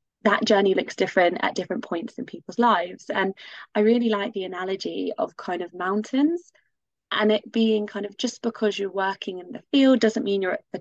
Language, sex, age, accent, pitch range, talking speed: English, female, 20-39, British, 185-235 Hz, 205 wpm